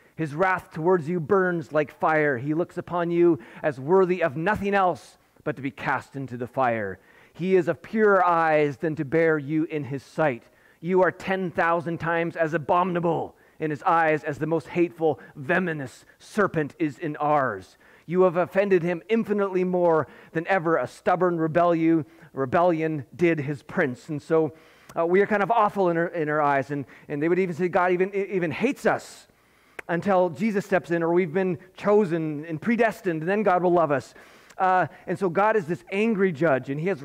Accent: American